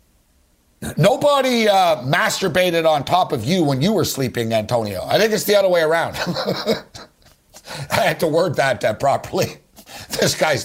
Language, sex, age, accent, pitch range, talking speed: English, male, 50-69, American, 150-200 Hz, 160 wpm